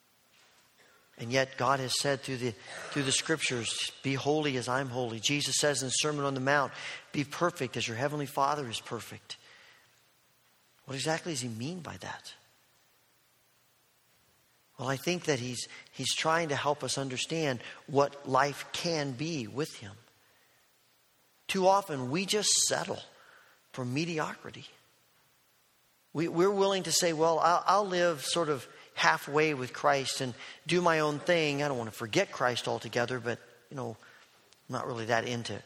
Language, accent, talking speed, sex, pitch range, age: English, American, 160 wpm, male, 130-170 Hz, 40-59